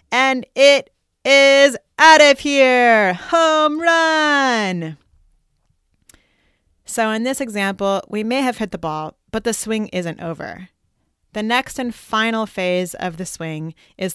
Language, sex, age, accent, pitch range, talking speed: English, female, 30-49, American, 165-220 Hz, 135 wpm